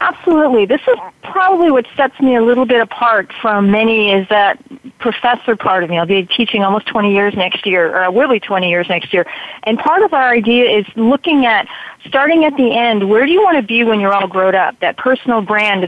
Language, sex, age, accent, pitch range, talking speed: English, female, 40-59, American, 210-260 Hz, 225 wpm